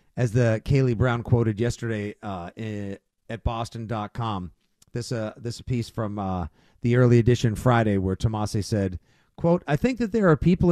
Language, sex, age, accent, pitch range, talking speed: English, male, 50-69, American, 110-140 Hz, 170 wpm